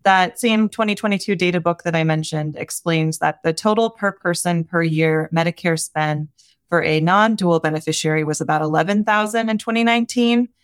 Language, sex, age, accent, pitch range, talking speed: English, female, 30-49, American, 160-200 Hz, 150 wpm